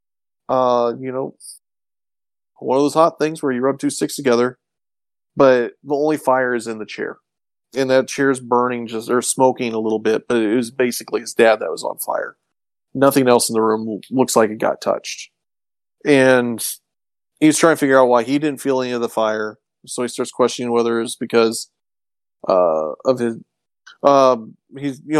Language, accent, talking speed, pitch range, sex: English, American, 190 wpm, 115-135 Hz, male